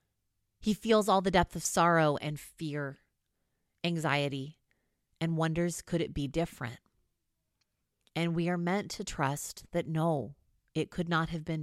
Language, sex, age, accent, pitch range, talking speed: English, female, 30-49, American, 140-200 Hz, 150 wpm